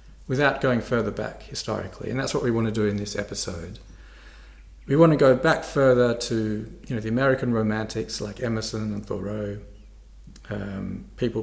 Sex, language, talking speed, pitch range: male, English, 175 wpm, 105-125 Hz